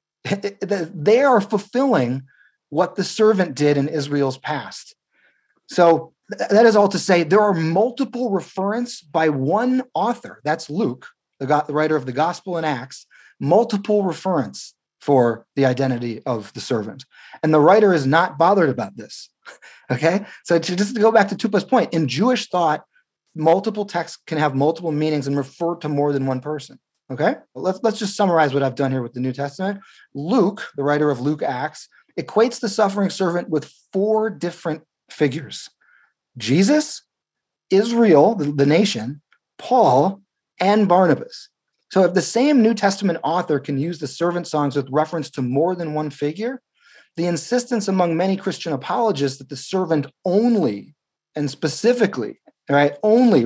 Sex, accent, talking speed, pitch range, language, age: male, American, 160 wpm, 145-205 Hz, English, 30-49